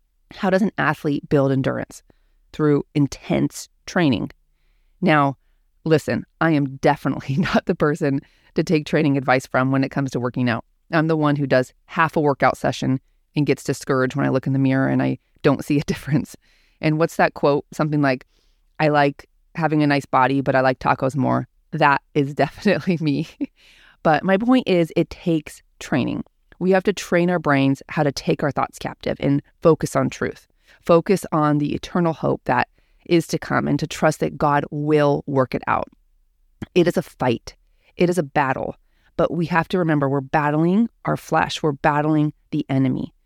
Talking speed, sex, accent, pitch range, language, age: 185 wpm, female, American, 135-165 Hz, English, 30-49